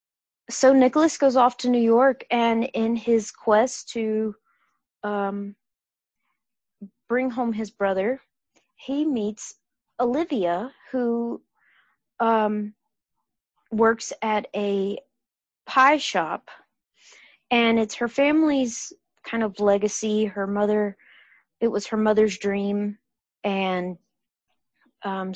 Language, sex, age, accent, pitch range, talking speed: English, female, 30-49, American, 195-235 Hz, 100 wpm